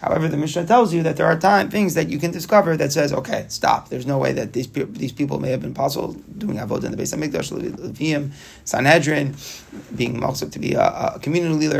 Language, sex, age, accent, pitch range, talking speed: English, male, 30-49, American, 135-170 Hz, 230 wpm